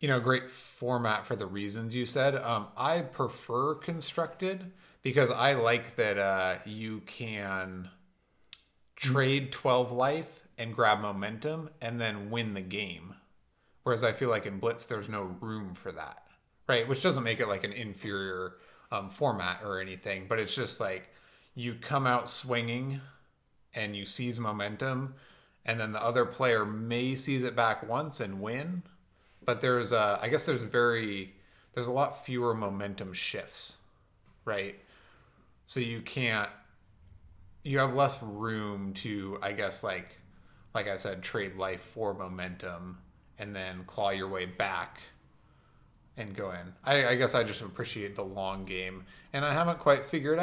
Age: 30-49